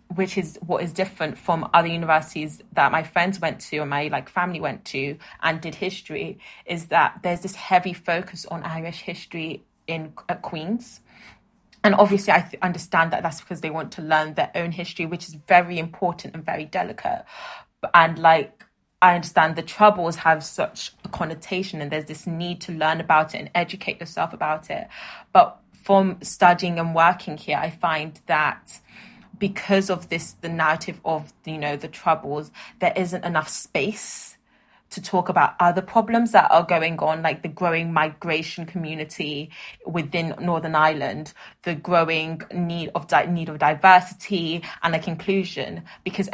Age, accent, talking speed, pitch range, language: 20-39, British, 170 wpm, 160-185 Hz, English